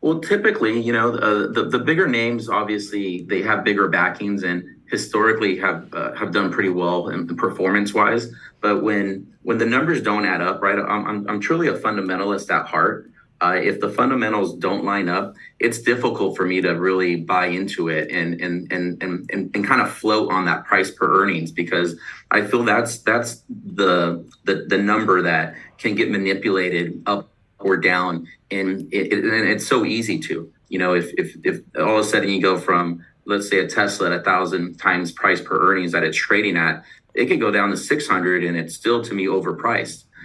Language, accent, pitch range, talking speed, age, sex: English, American, 90-105 Hz, 200 wpm, 30-49, male